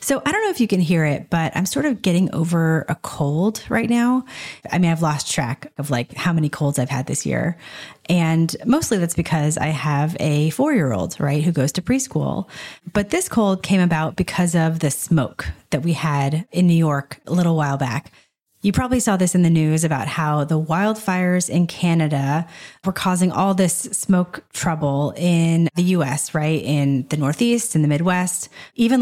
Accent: American